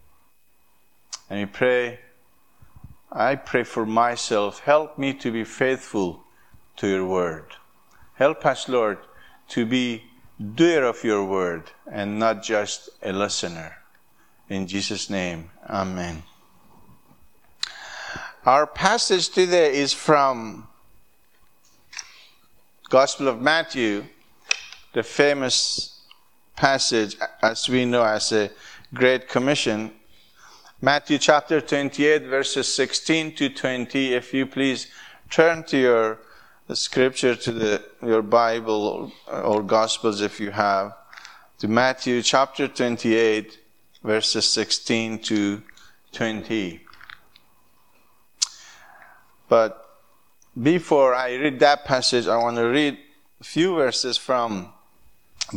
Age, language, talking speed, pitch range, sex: 50-69, English, 105 wpm, 105-130 Hz, male